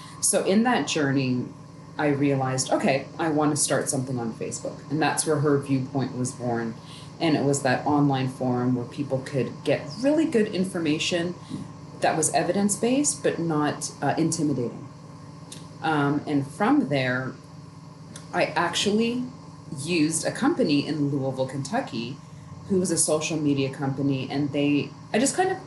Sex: female